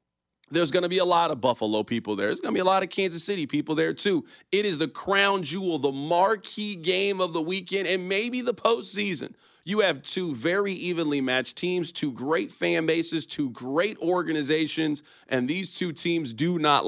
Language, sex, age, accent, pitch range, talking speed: English, male, 40-59, American, 130-180 Hz, 205 wpm